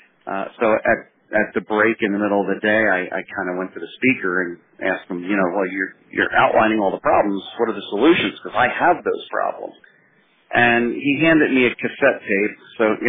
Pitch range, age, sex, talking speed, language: 95-115 Hz, 40-59, male, 230 wpm, English